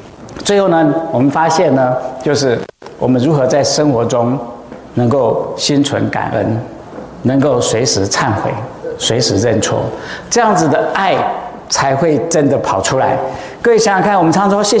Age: 50-69